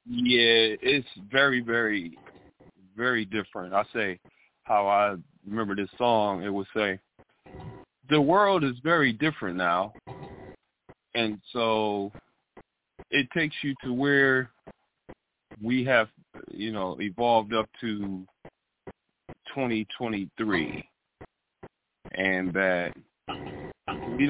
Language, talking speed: English, 90 wpm